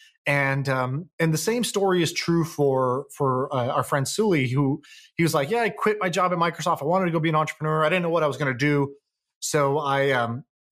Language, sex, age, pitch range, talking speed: English, male, 20-39, 140-185 Hz, 245 wpm